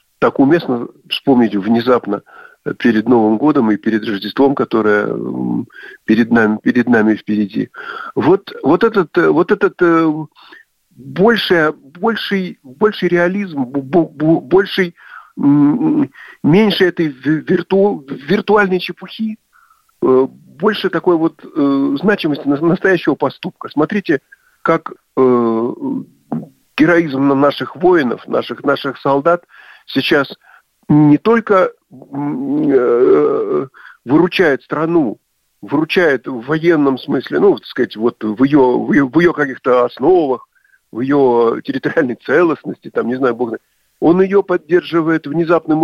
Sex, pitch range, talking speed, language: male, 130-205 Hz, 100 wpm, Russian